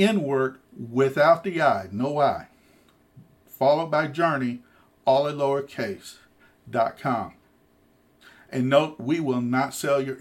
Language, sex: English, male